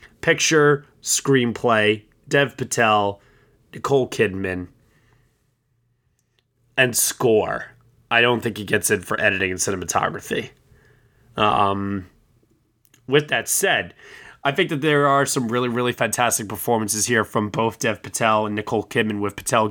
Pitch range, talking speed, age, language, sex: 105-135 Hz, 130 wpm, 20-39, English, male